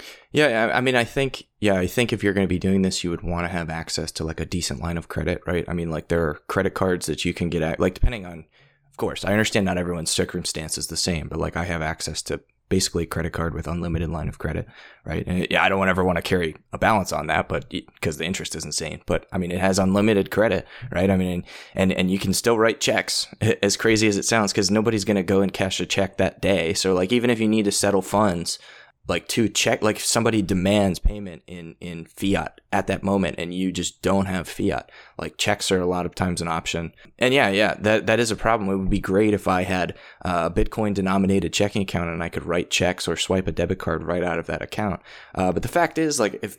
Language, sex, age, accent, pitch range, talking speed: English, male, 20-39, American, 85-100 Hz, 260 wpm